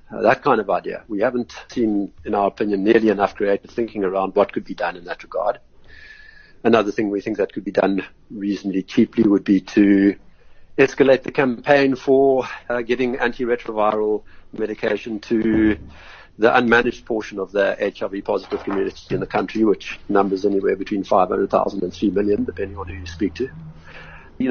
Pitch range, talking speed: 100-125 Hz, 175 wpm